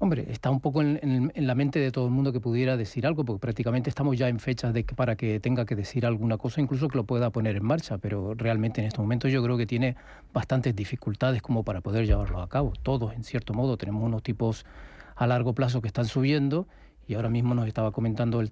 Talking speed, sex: 235 wpm, male